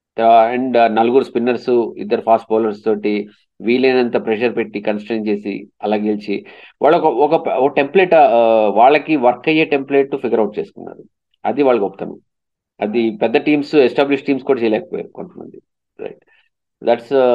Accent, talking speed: native, 125 wpm